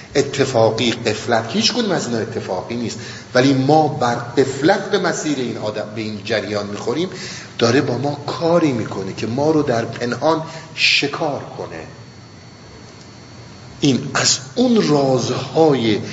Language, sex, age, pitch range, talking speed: Persian, male, 50-69, 110-140 Hz, 130 wpm